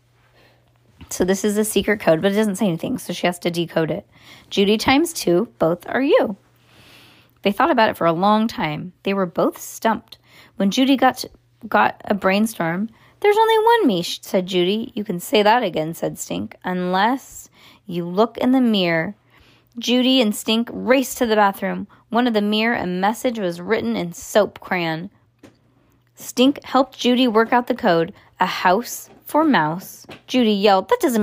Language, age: English, 20-39